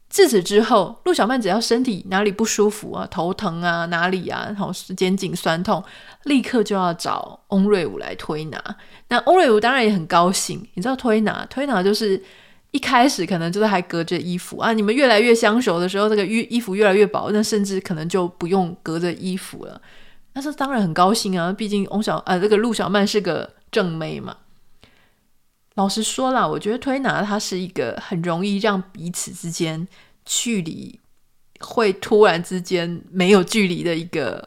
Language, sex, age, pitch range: Chinese, female, 30-49, 180-230 Hz